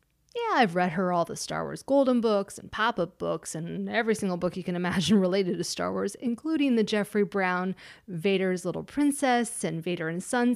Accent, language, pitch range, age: American, English, 170-230 Hz, 30-49